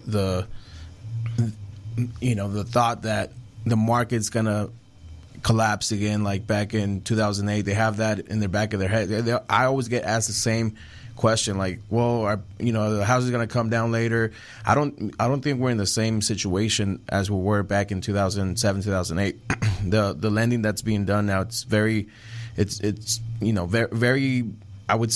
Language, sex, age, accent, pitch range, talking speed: English, male, 20-39, American, 100-115 Hz, 195 wpm